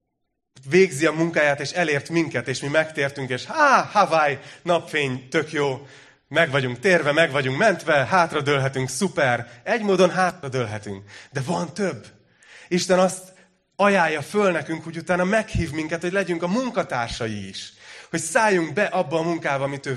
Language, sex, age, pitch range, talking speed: Hungarian, male, 30-49, 125-170 Hz, 155 wpm